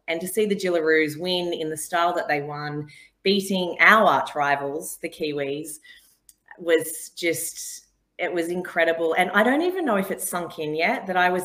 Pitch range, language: 160-205 Hz, English